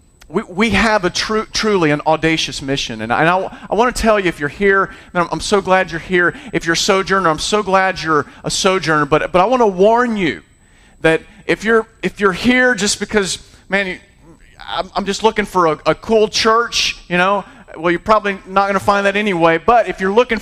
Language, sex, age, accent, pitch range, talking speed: English, male, 40-59, American, 170-220 Hz, 230 wpm